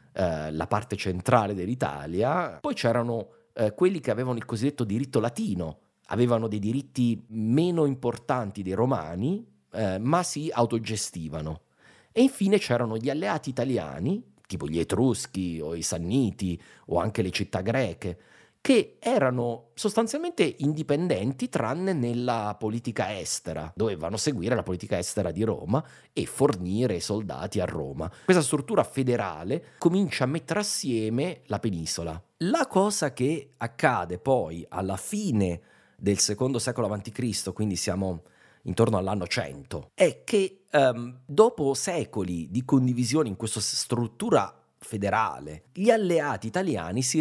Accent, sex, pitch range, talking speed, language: native, male, 100-145 Hz, 125 wpm, Italian